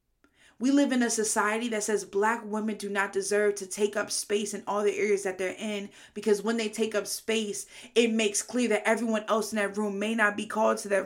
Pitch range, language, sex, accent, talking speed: 205-235 Hz, English, female, American, 240 wpm